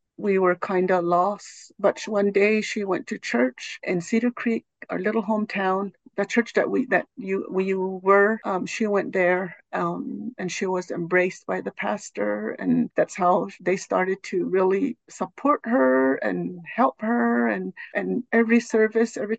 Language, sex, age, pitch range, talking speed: English, female, 60-79, 190-235 Hz, 175 wpm